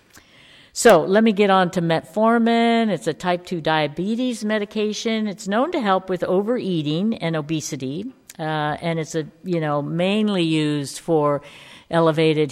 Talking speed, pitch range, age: 150 wpm, 160-210 Hz, 50-69